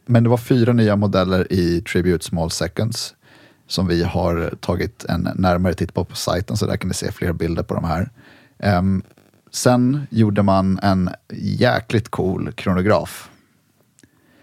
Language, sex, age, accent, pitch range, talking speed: English, male, 30-49, Swedish, 95-115 Hz, 155 wpm